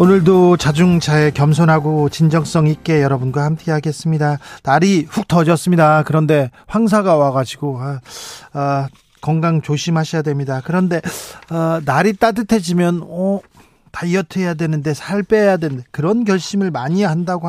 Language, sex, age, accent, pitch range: Korean, male, 40-59, native, 145-195 Hz